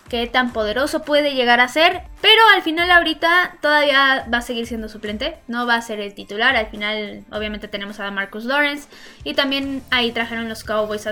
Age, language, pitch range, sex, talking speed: 10-29, Spanish, 220-280 Hz, female, 200 wpm